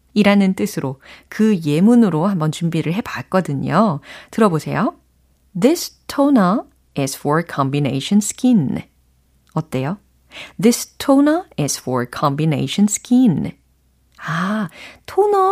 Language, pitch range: Korean, 155-245 Hz